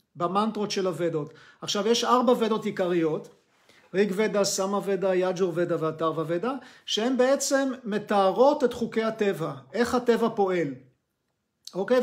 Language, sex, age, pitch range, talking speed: Hebrew, male, 40-59, 185-230 Hz, 110 wpm